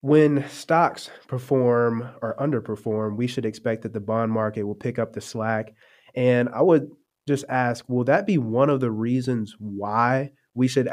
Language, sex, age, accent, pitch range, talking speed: English, male, 20-39, American, 115-130 Hz, 175 wpm